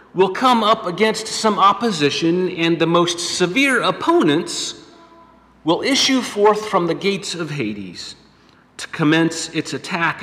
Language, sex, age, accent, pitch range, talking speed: English, male, 40-59, American, 155-200 Hz, 135 wpm